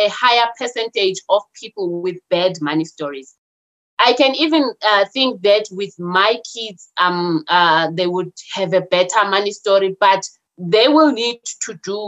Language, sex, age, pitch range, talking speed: English, female, 20-39, 180-255 Hz, 165 wpm